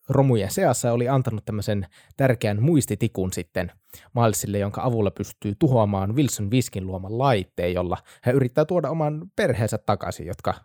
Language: Finnish